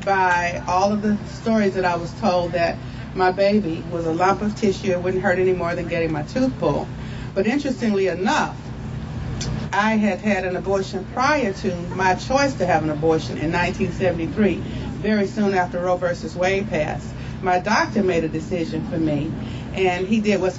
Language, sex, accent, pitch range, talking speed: English, female, American, 170-205 Hz, 185 wpm